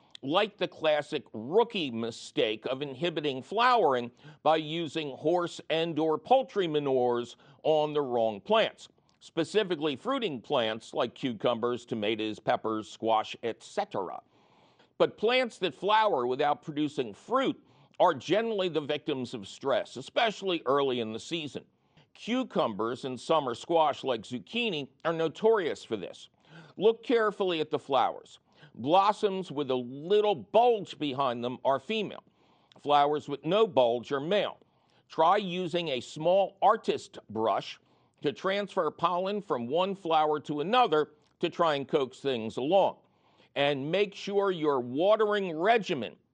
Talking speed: 130 wpm